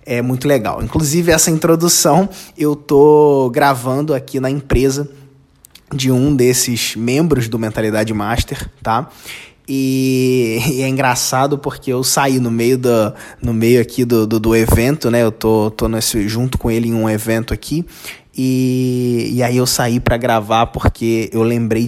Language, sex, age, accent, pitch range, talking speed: Portuguese, male, 20-39, Brazilian, 115-135 Hz, 150 wpm